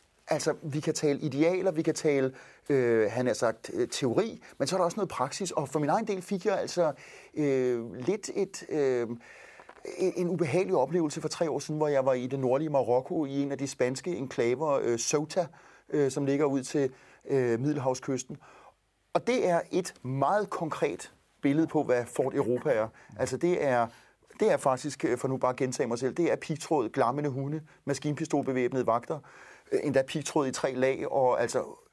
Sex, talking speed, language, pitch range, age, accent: male, 185 wpm, Danish, 130-165 Hz, 30-49, native